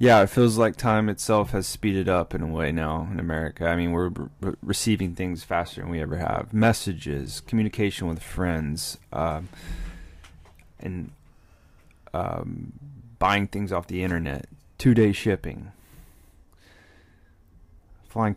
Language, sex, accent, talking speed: English, male, American, 130 wpm